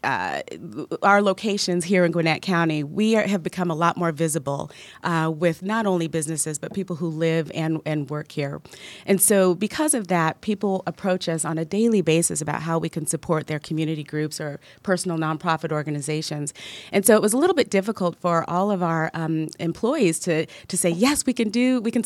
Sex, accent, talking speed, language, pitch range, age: female, American, 200 wpm, English, 160-195 Hz, 30-49